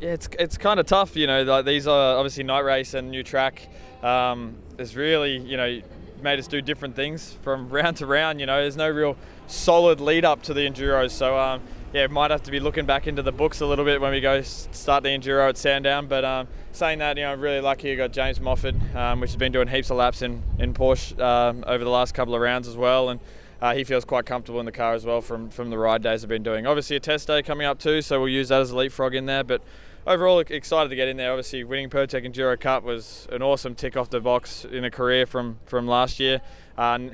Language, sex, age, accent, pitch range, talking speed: English, male, 20-39, Australian, 125-140 Hz, 260 wpm